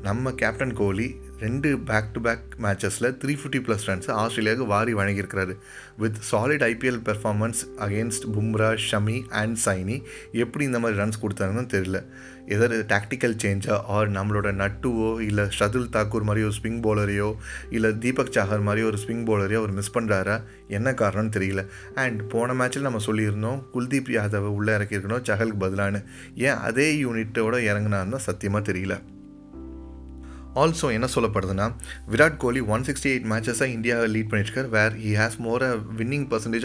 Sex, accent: male, native